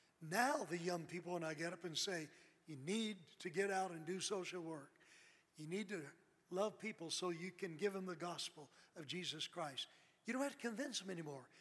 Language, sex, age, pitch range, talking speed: English, male, 60-79, 170-210 Hz, 210 wpm